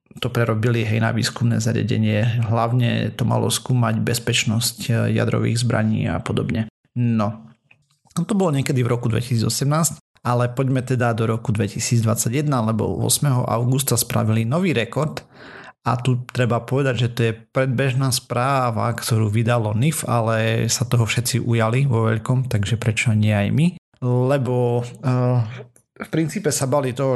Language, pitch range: Slovak, 110-130 Hz